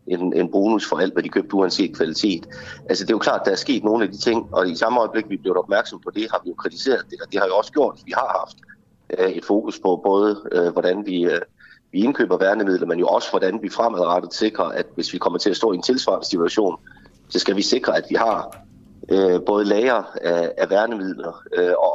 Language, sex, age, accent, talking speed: Danish, male, 30-49, native, 230 wpm